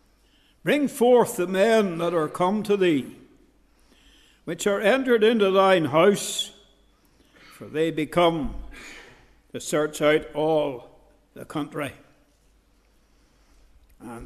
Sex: male